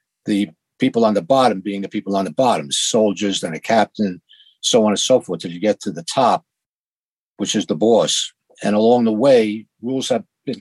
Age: 60-79